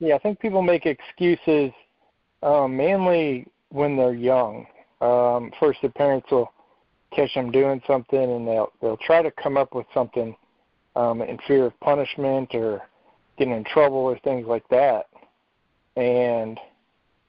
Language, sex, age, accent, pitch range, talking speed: English, male, 40-59, American, 120-145 Hz, 150 wpm